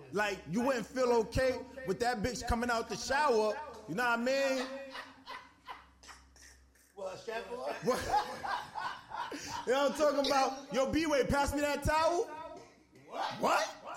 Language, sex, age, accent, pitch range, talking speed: English, male, 20-39, American, 160-245 Hz, 135 wpm